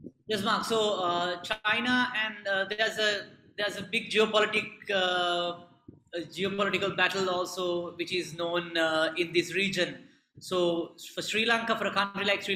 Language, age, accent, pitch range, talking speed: English, 20-39, Indian, 170-195 Hz, 160 wpm